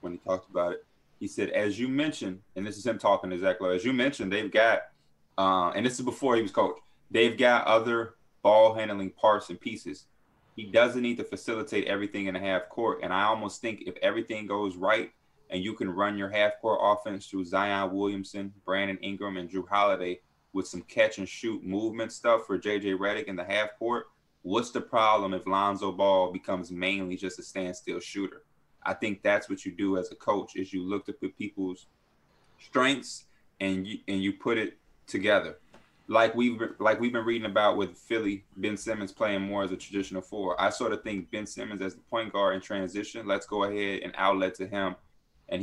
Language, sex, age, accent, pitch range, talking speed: English, male, 20-39, American, 95-110 Hz, 205 wpm